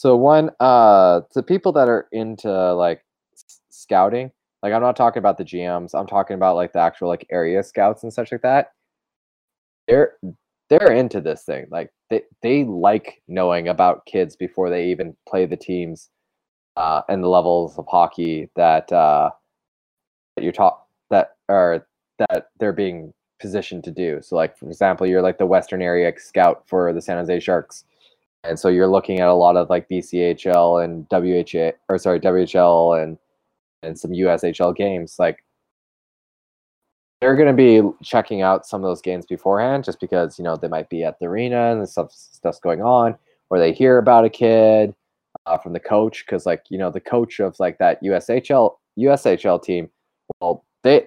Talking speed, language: 180 wpm, English